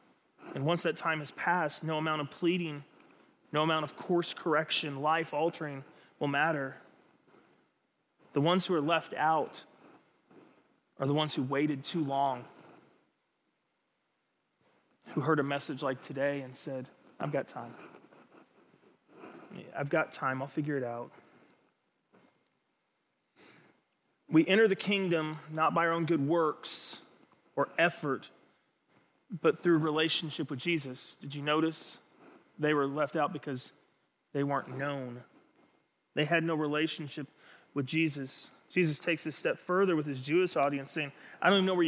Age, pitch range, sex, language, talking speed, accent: 30-49, 145-175 Hz, male, English, 140 wpm, American